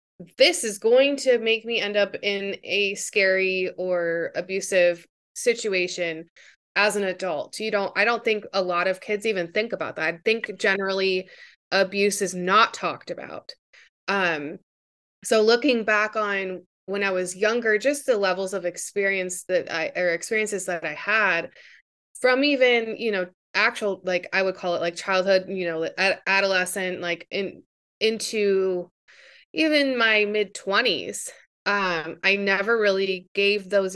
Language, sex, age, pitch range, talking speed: English, female, 20-39, 185-215 Hz, 155 wpm